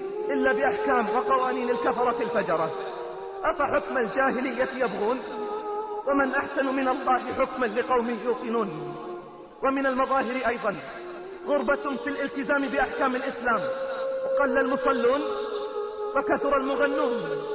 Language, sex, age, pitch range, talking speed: Arabic, male, 30-49, 260-365 Hz, 90 wpm